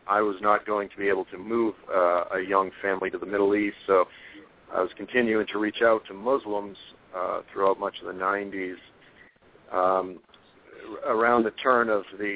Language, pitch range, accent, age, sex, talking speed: English, 100-115 Hz, American, 50-69, male, 185 wpm